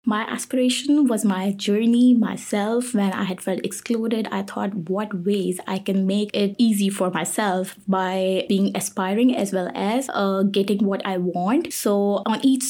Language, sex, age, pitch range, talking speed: English, female, 20-39, 195-220 Hz, 170 wpm